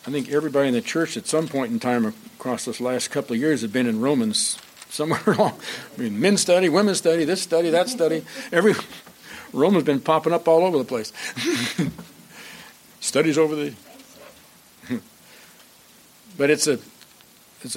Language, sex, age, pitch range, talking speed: English, male, 60-79, 135-175 Hz, 170 wpm